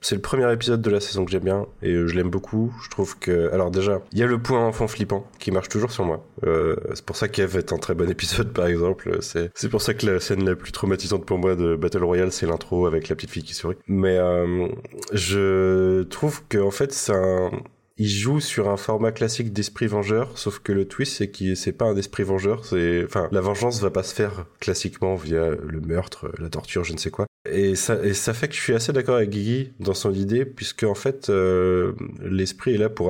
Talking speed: 245 wpm